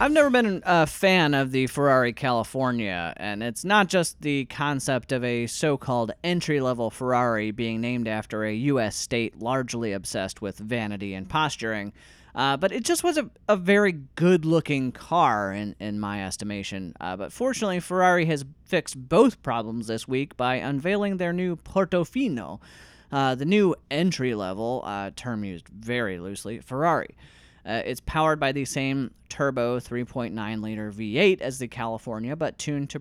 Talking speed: 155 wpm